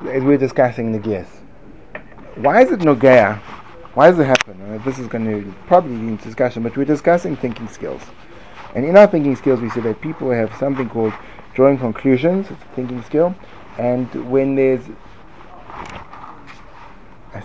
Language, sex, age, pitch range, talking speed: English, male, 30-49, 115-150 Hz, 175 wpm